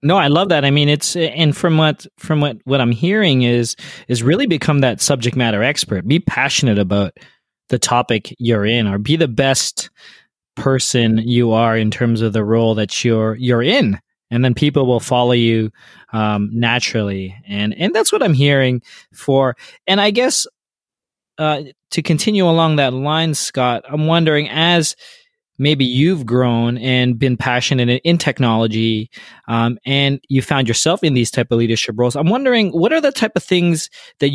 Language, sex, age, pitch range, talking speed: English, male, 20-39, 120-150 Hz, 180 wpm